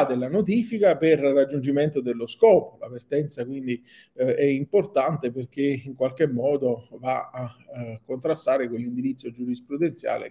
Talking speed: 130 wpm